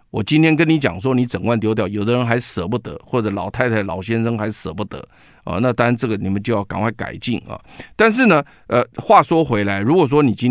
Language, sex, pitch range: Chinese, male, 100-125 Hz